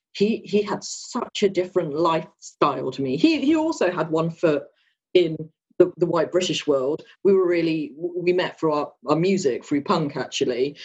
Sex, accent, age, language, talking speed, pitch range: female, British, 40-59, English, 185 wpm, 155-205 Hz